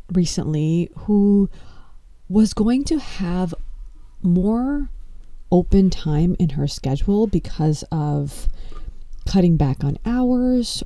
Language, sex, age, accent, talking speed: English, female, 30-49, American, 100 wpm